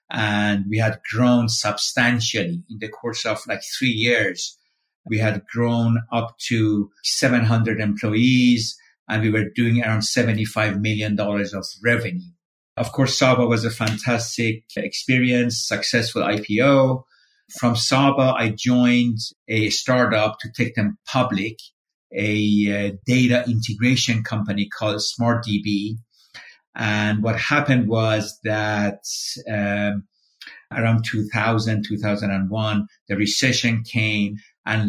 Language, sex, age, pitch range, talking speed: English, male, 50-69, 105-120 Hz, 115 wpm